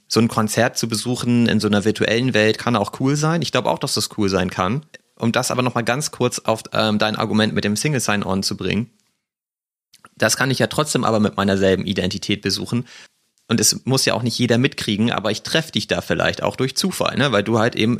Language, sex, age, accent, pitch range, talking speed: German, male, 30-49, German, 105-120 Hz, 235 wpm